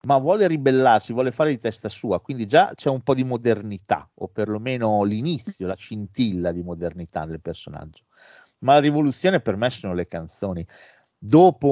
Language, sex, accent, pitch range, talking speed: Italian, male, native, 100-135 Hz, 170 wpm